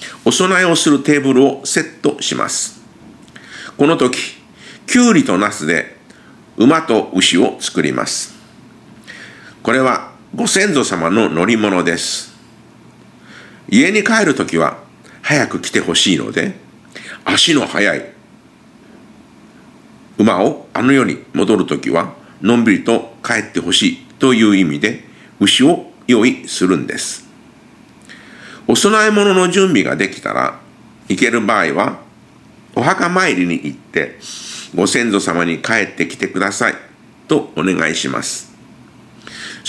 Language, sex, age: Japanese, male, 50-69